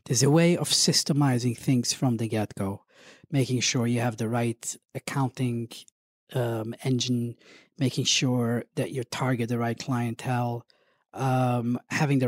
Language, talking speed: English, 140 wpm